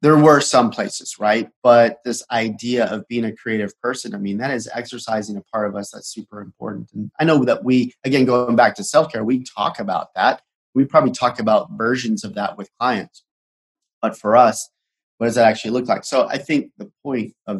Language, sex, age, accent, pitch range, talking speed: English, male, 30-49, American, 105-125 Hz, 215 wpm